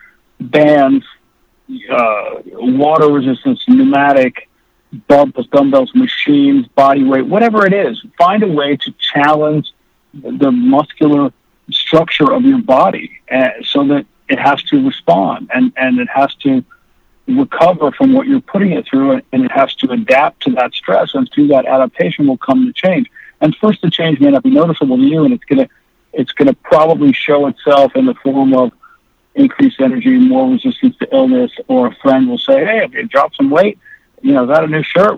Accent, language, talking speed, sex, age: American, English, 175 wpm, male, 50-69